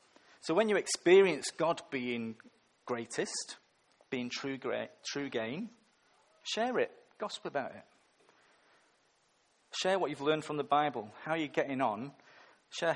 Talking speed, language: 140 wpm, English